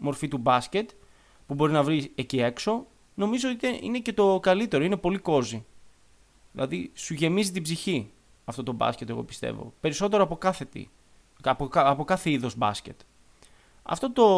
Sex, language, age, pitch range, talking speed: male, Greek, 20-39, 135-200 Hz, 160 wpm